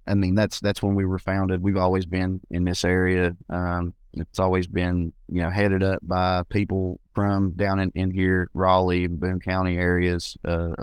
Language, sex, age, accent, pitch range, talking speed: English, male, 30-49, American, 90-105 Hz, 190 wpm